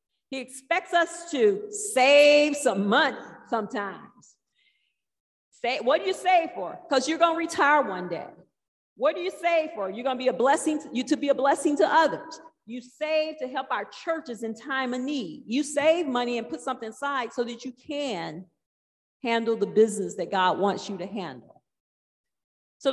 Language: English